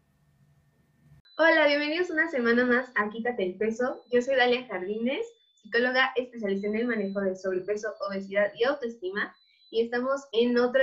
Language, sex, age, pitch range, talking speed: Spanish, female, 20-39, 195-245 Hz, 150 wpm